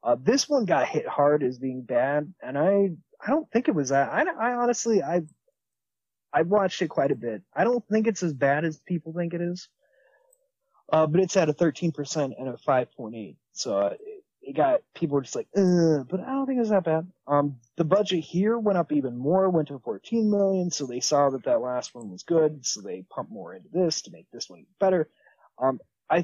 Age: 30-49